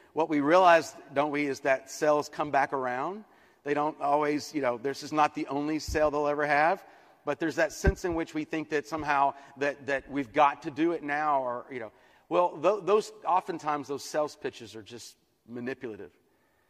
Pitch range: 130-155 Hz